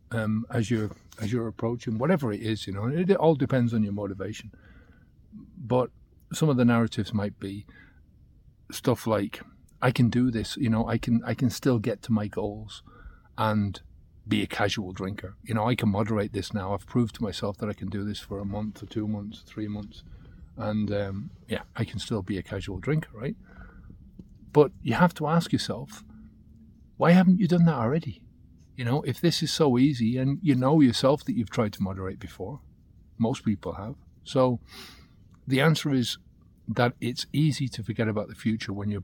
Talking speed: 195 wpm